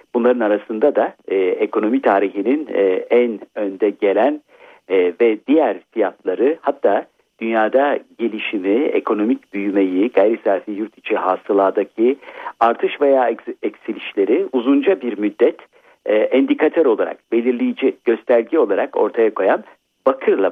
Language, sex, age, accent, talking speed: Turkish, male, 50-69, native, 115 wpm